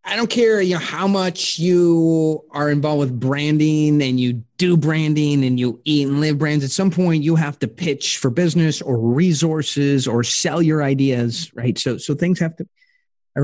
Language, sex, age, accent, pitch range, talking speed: English, male, 30-49, American, 140-190 Hz, 195 wpm